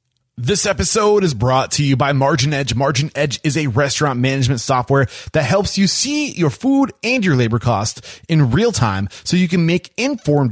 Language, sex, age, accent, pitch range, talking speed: English, male, 30-49, American, 130-185 Hz, 195 wpm